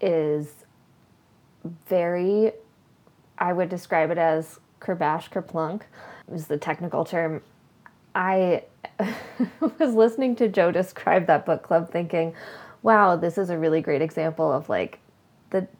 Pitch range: 160-205 Hz